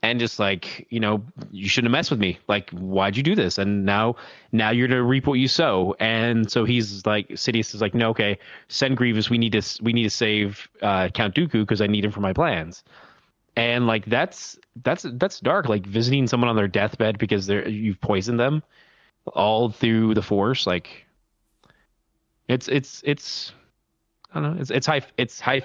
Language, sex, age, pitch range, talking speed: English, male, 20-39, 105-130 Hz, 205 wpm